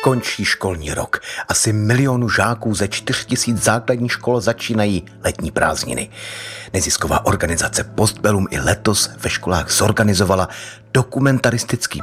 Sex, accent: male, native